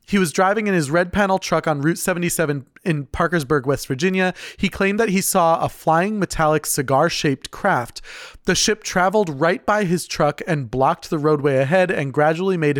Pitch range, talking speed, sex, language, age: 145-185 Hz, 190 wpm, male, English, 30-49